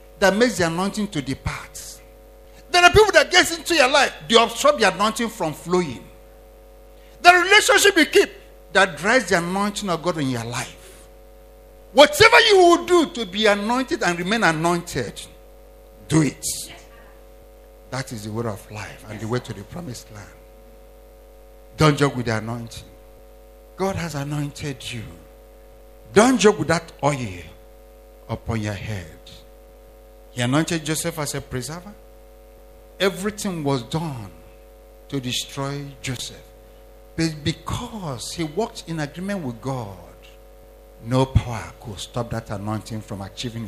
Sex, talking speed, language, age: male, 145 wpm, English, 50-69